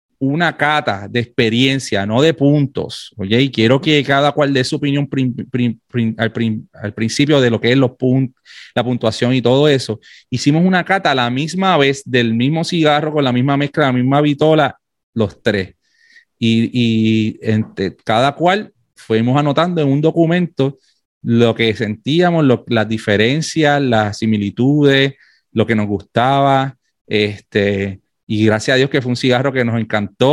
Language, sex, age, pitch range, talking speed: English, male, 30-49, 115-150 Hz, 170 wpm